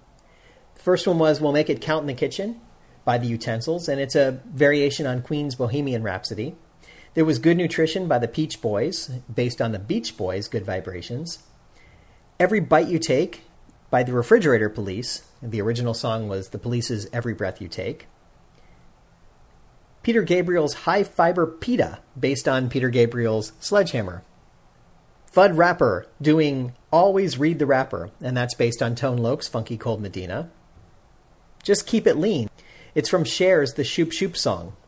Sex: male